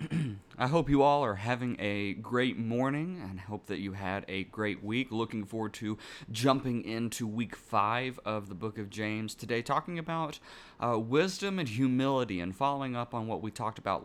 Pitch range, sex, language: 110-145 Hz, male, English